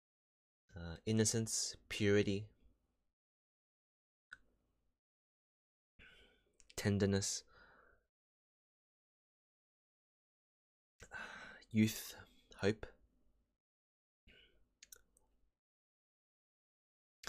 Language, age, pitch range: English, 20-39, 80-105 Hz